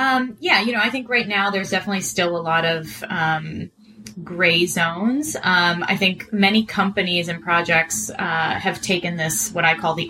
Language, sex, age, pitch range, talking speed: English, female, 20-39, 165-210 Hz, 190 wpm